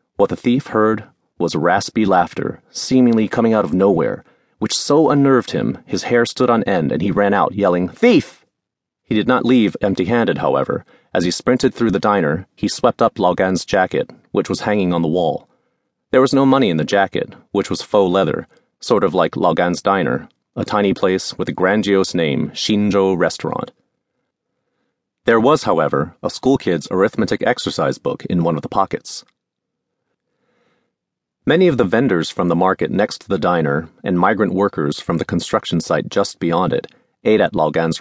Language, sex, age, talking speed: English, male, 30-49, 180 wpm